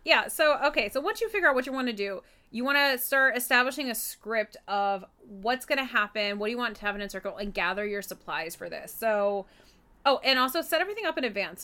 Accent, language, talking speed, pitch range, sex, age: American, English, 250 wpm, 205-245 Hz, female, 20-39